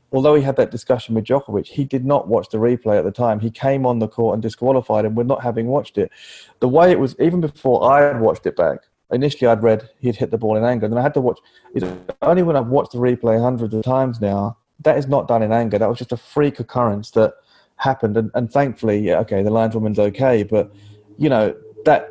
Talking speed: 250 wpm